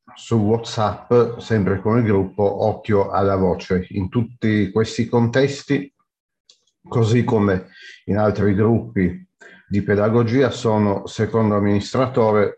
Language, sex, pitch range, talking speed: Italian, male, 100-120 Hz, 110 wpm